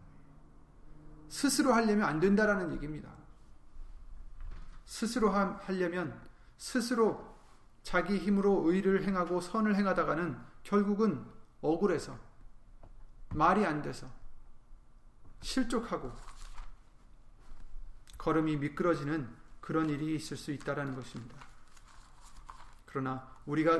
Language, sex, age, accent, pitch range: Korean, male, 30-49, native, 135-195 Hz